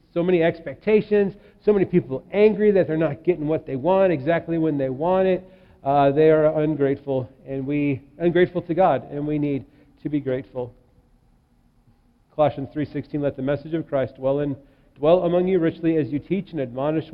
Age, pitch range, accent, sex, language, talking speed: 40-59, 130-160 Hz, American, male, English, 180 wpm